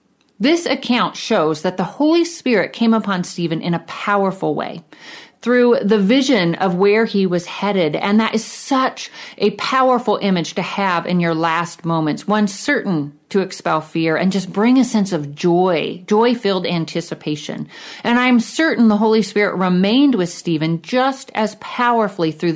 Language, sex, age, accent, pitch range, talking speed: English, female, 40-59, American, 170-230 Hz, 170 wpm